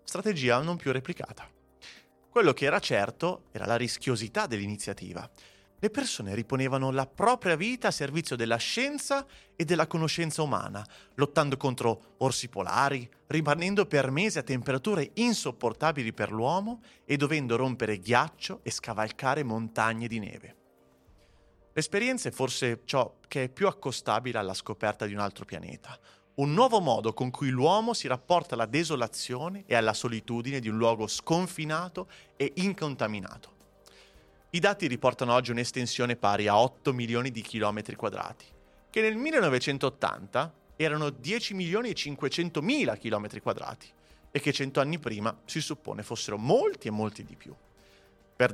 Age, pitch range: 30-49, 110-155 Hz